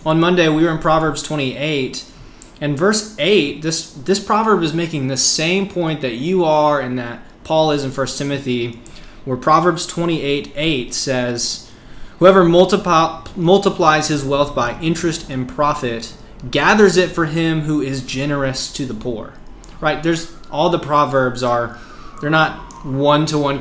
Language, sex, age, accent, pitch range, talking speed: English, male, 20-39, American, 130-165 Hz, 155 wpm